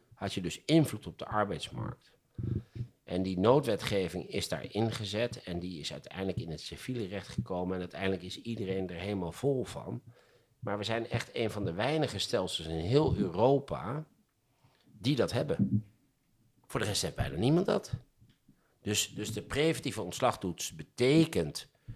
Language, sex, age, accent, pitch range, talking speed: Dutch, male, 50-69, Dutch, 90-120 Hz, 160 wpm